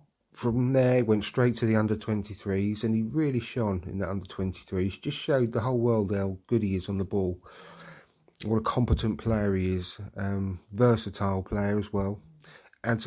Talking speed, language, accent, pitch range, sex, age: 175 wpm, English, British, 95-115 Hz, male, 30-49